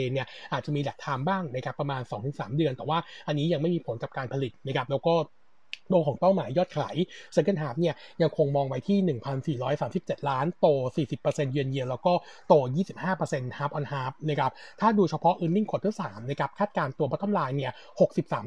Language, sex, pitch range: Thai, male, 140-180 Hz